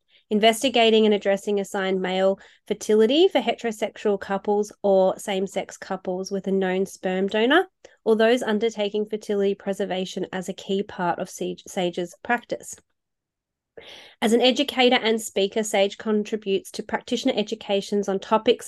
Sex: female